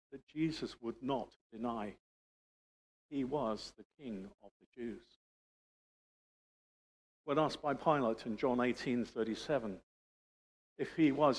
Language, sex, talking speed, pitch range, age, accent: English, male, 115 wpm, 115-155 Hz, 50-69, British